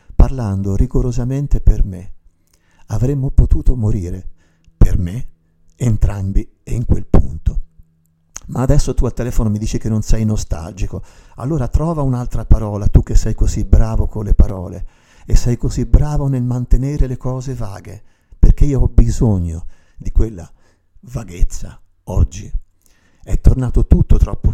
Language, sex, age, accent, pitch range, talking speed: Italian, male, 50-69, native, 90-115 Hz, 140 wpm